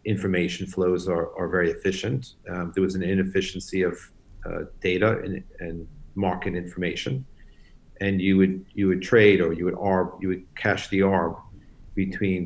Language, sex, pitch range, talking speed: English, male, 90-95 Hz, 165 wpm